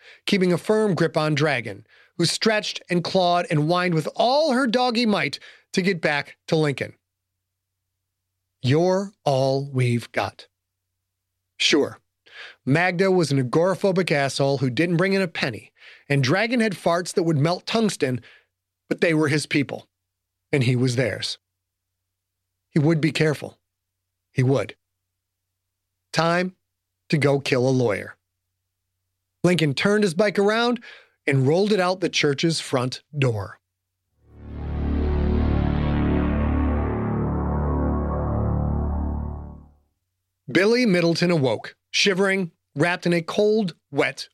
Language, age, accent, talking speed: English, 30-49, American, 120 wpm